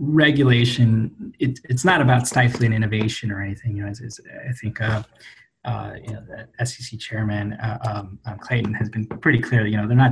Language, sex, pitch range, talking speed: English, male, 110-125 Hz, 195 wpm